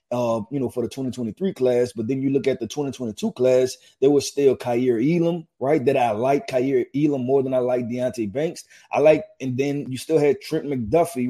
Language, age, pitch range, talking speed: English, 20-39, 115-150 Hz, 220 wpm